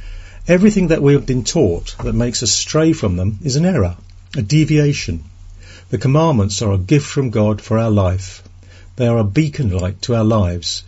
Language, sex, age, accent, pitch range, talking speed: English, male, 50-69, British, 90-130 Hz, 195 wpm